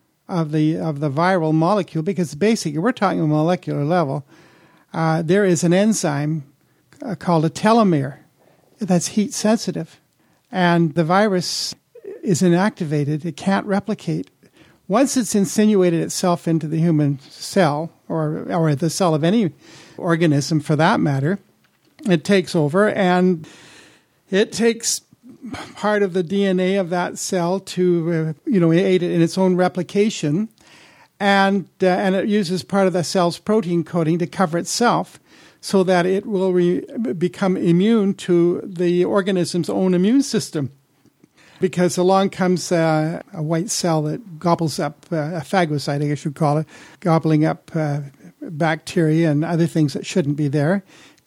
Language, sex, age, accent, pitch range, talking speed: English, male, 50-69, American, 160-195 Hz, 150 wpm